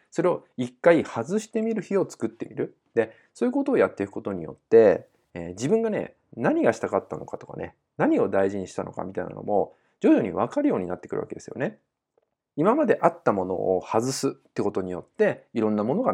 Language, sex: Japanese, male